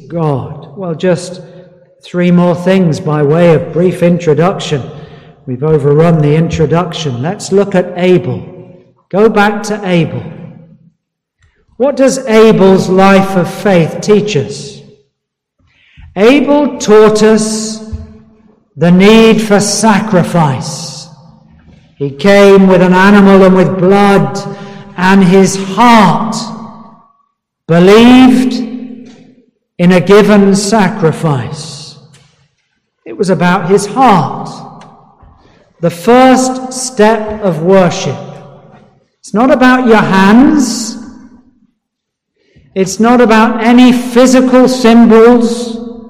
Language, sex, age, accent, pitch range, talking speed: English, male, 50-69, British, 170-225 Hz, 100 wpm